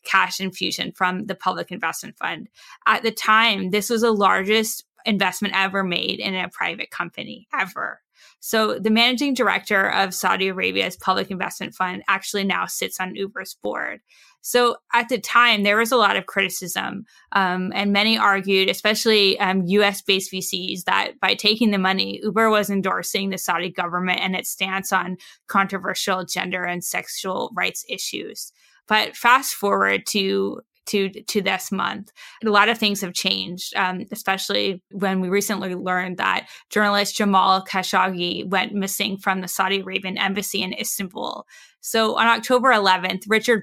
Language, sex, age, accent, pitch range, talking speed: English, female, 20-39, American, 185-215 Hz, 155 wpm